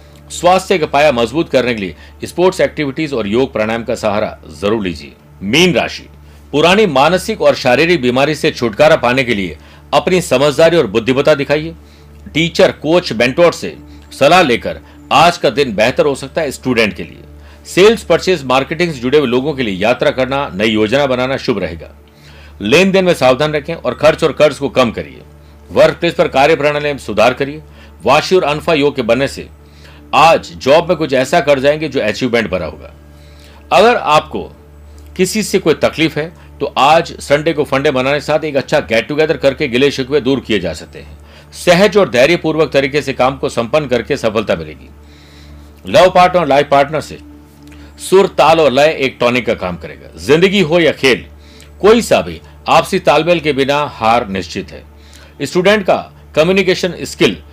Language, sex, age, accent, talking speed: Hindi, male, 60-79, native, 145 wpm